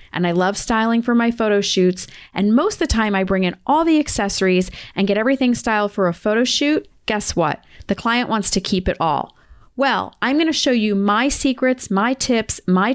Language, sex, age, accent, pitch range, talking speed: English, female, 30-49, American, 200-255 Hz, 215 wpm